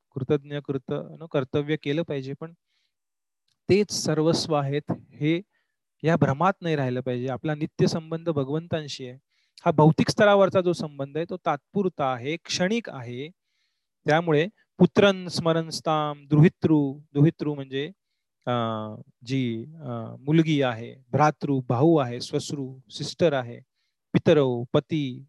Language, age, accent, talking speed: Marathi, 30-49, native, 70 wpm